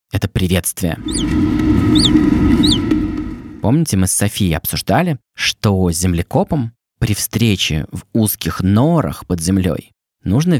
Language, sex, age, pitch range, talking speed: Russian, male, 20-39, 90-125 Hz, 95 wpm